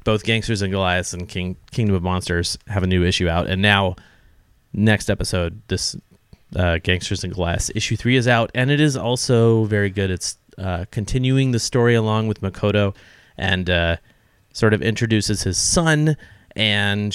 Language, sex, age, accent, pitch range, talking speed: English, male, 30-49, American, 95-115 Hz, 170 wpm